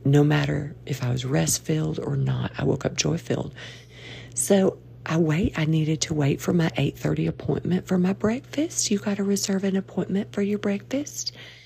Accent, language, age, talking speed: American, English, 40-59, 180 wpm